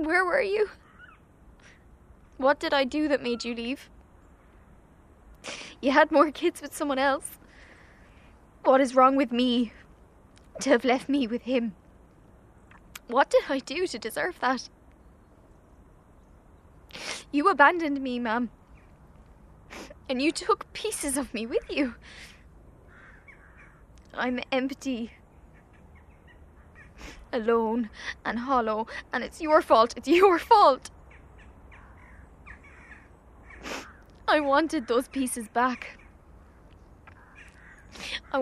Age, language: 10-29, English